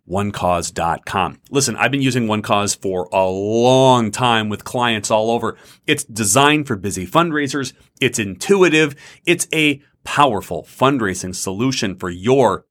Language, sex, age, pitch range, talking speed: English, male, 30-49, 105-145 Hz, 130 wpm